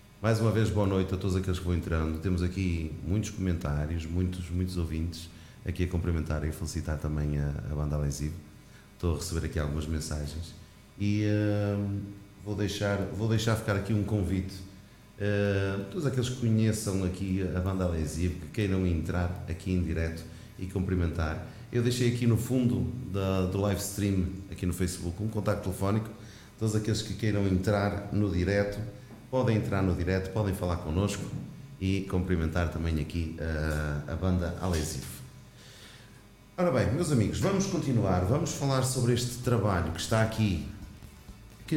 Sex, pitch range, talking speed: male, 85-110 Hz, 160 wpm